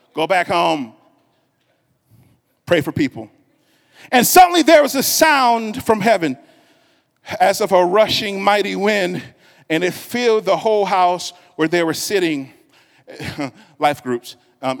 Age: 40-59